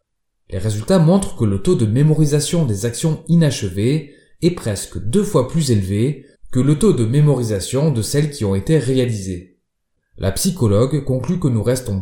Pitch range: 105-155 Hz